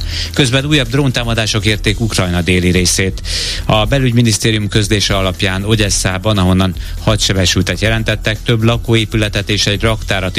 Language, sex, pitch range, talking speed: Hungarian, male, 90-115 Hz, 115 wpm